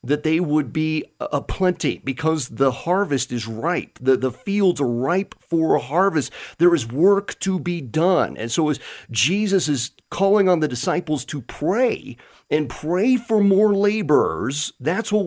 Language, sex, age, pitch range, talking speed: English, male, 40-59, 135-185 Hz, 170 wpm